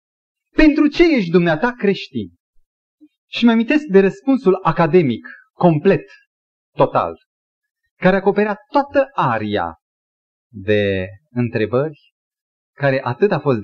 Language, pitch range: Romanian, 135-230 Hz